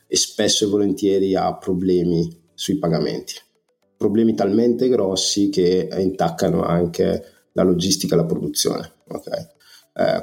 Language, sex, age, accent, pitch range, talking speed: Italian, male, 30-49, native, 85-100 Hz, 125 wpm